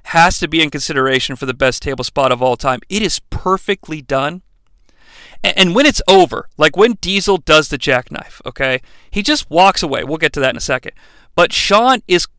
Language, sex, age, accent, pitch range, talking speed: English, male, 40-59, American, 145-220 Hz, 205 wpm